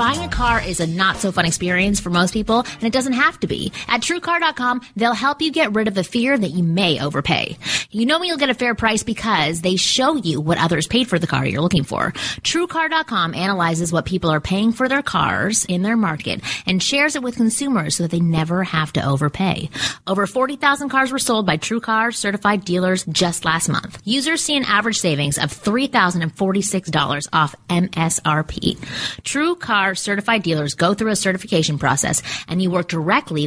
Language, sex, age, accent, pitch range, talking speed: English, female, 30-49, American, 165-235 Hz, 195 wpm